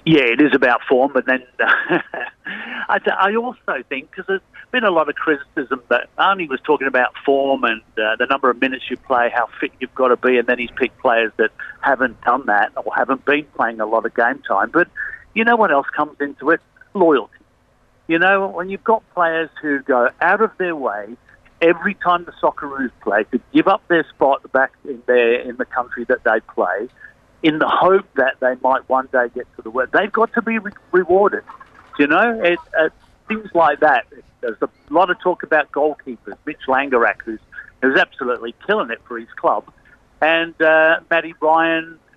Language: English